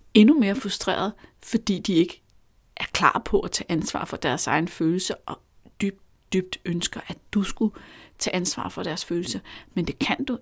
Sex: female